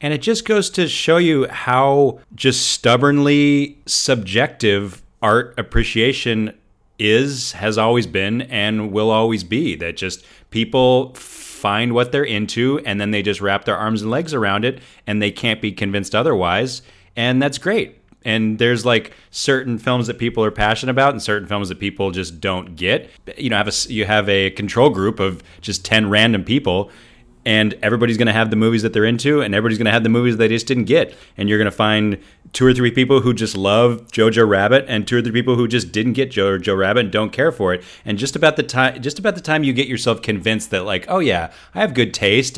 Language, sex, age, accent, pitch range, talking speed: English, male, 30-49, American, 105-130 Hz, 220 wpm